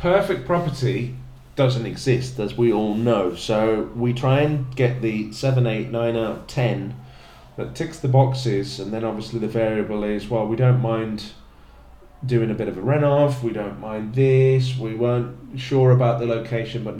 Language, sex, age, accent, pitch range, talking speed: English, male, 30-49, British, 110-130 Hz, 180 wpm